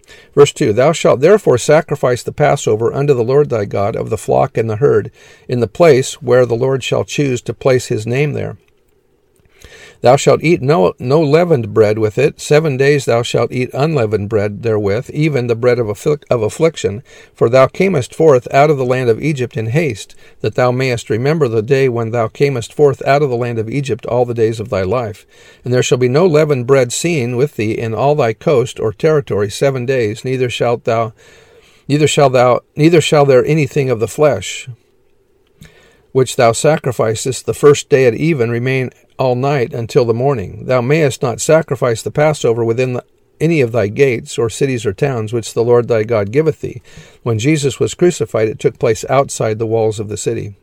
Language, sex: English, male